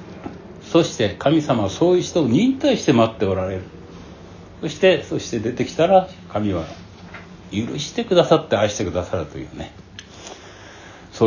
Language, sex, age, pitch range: Japanese, male, 60-79, 95-160 Hz